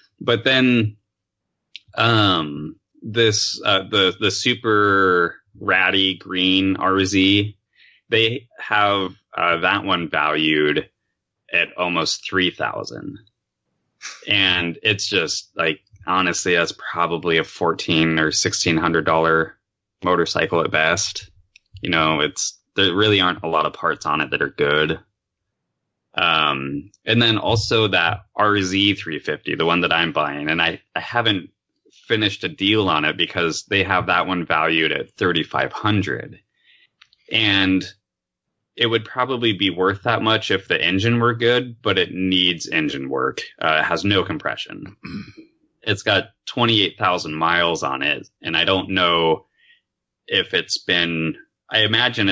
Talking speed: 140 wpm